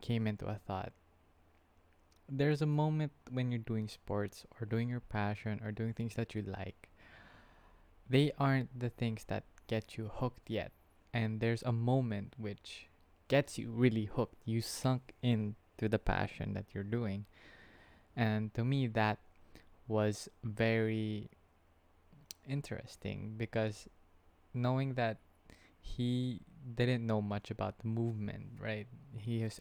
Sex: male